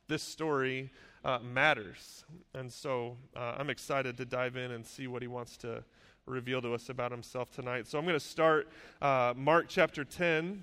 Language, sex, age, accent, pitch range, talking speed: English, male, 30-49, American, 130-155 Hz, 180 wpm